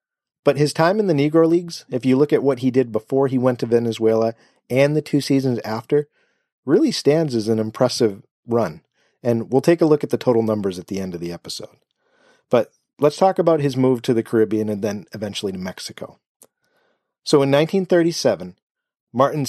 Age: 40-59